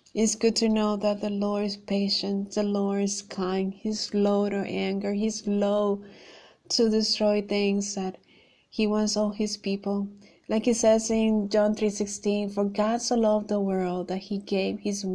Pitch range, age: 195-215 Hz, 30-49